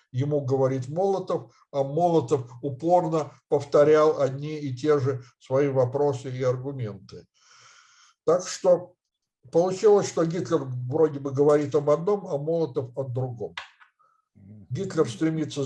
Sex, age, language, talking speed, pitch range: male, 60-79, Russian, 120 wpm, 140-190 Hz